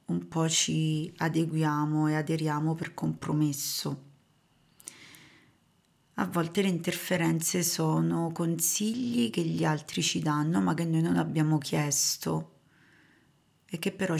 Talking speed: 120 wpm